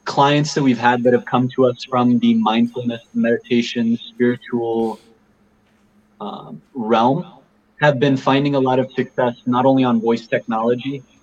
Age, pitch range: 20-39, 115-140 Hz